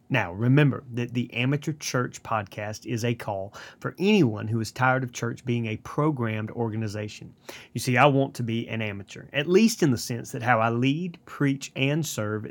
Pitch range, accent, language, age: 115-145 Hz, American, English, 30-49